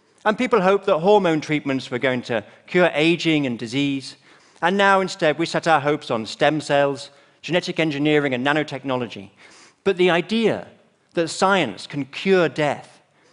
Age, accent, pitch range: 40-59, British, 140-180 Hz